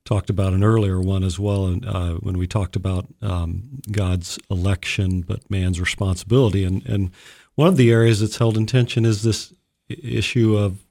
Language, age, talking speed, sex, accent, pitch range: English, 50-69, 180 wpm, male, American, 105-130 Hz